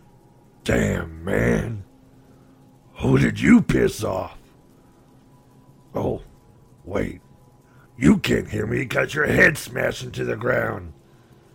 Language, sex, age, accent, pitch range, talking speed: English, male, 60-79, American, 65-90 Hz, 105 wpm